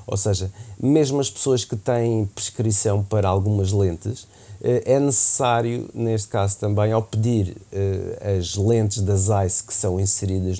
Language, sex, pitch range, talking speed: Portuguese, male, 100-120 Hz, 140 wpm